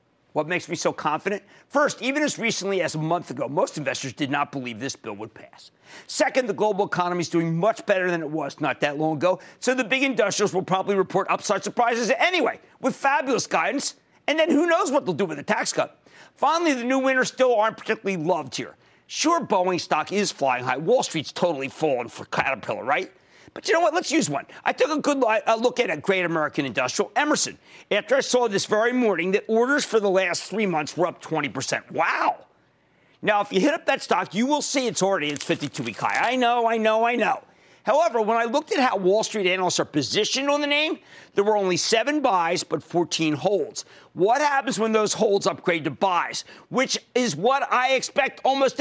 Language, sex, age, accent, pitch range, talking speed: English, male, 50-69, American, 175-255 Hz, 220 wpm